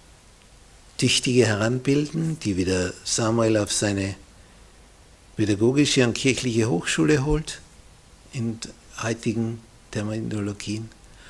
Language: German